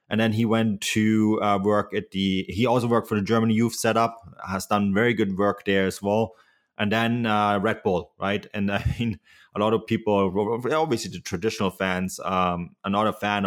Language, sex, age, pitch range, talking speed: English, male, 20-39, 95-115 Hz, 210 wpm